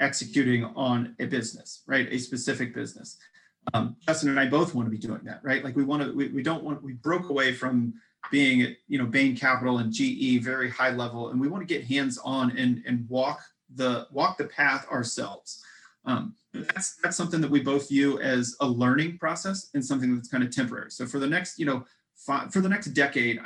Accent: American